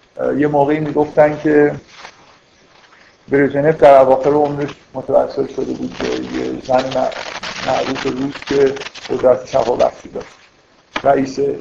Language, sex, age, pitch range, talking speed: Persian, male, 50-69, 130-155 Hz, 110 wpm